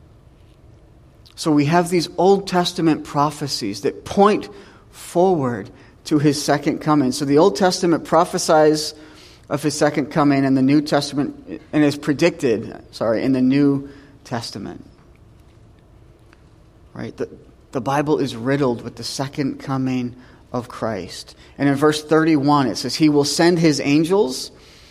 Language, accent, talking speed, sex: English, American, 140 wpm, male